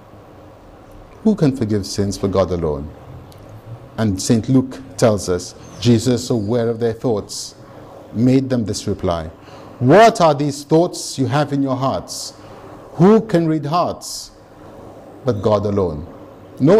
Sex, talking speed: male, 135 wpm